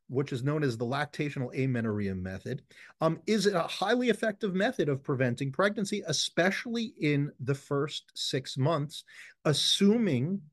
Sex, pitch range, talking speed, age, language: male, 120-160 Hz, 140 wpm, 40-59, English